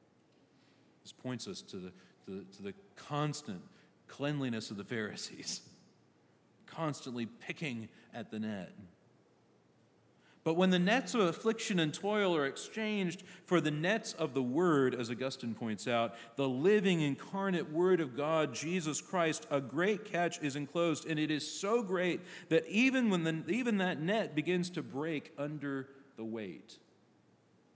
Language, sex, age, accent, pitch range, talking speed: English, male, 40-59, American, 115-175 Hz, 150 wpm